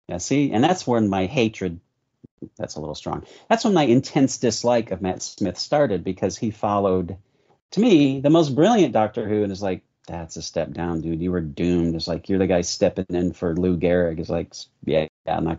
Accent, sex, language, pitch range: American, male, English, 90-115 Hz